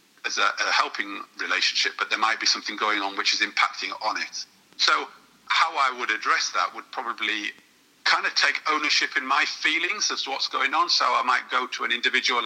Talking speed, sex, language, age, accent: 210 wpm, male, English, 40-59, British